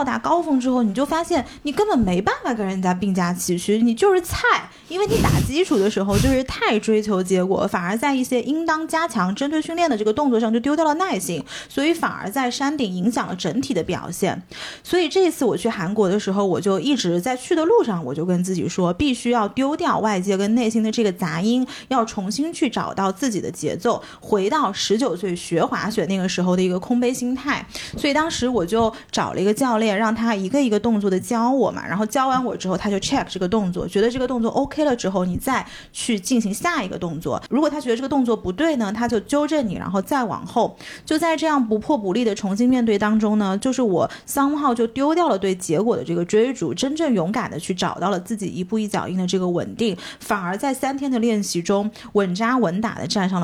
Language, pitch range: Chinese, 195-270 Hz